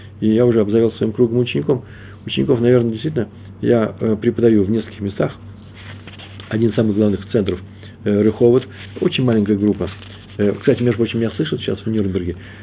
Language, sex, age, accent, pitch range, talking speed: Russian, male, 40-59, native, 100-115 Hz, 160 wpm